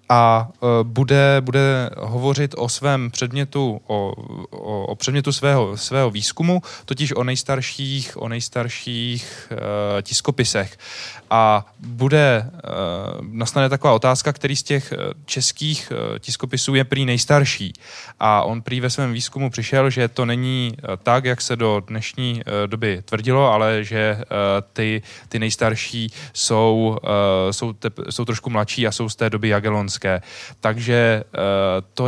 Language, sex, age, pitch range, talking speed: Czech, male, 20-39, 110-135 Hz, 125 wpm